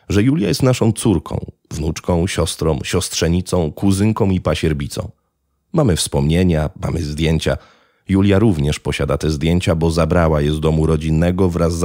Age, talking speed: 30-49, 140 wpm